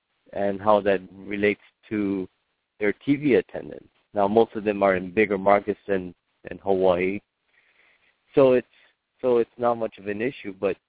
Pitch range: 95-110 Hz